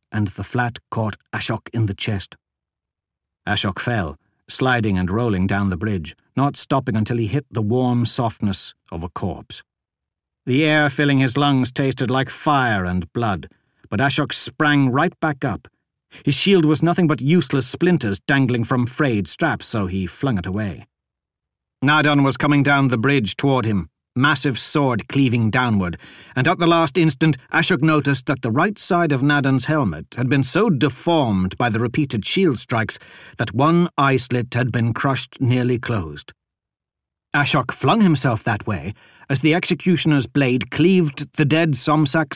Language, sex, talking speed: English, male, 165 wpm